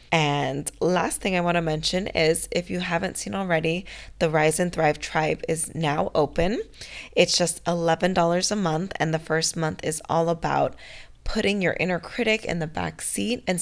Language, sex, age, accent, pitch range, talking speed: English, female, 20-39, American, 150-175 Hz, 185 wpm